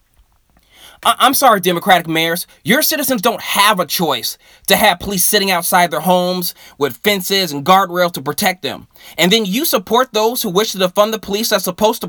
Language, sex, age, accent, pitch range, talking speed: English, male, 20-39, American, 175-240 Hz, 190 wpm